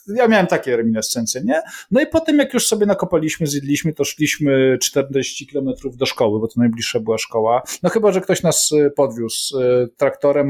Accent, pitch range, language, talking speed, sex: native, 120-180 Hz, Polish, 185 wpm, male